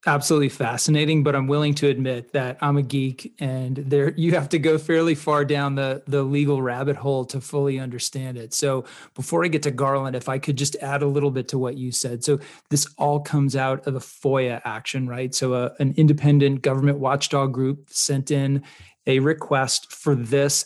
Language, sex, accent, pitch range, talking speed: English, male, American, 130-145 Hz, 205 wpm